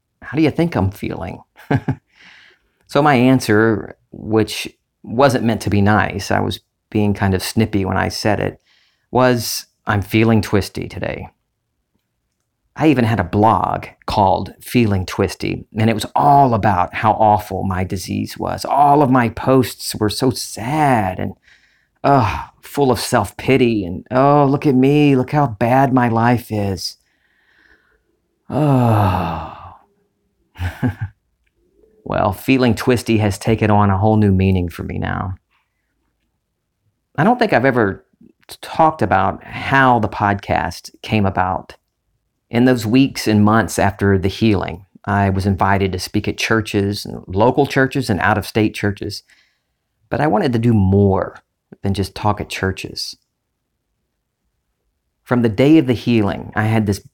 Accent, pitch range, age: American, 100-125 Hz, 40-59